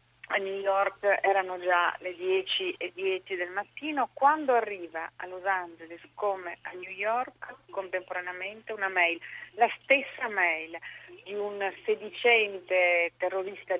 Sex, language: female, Italian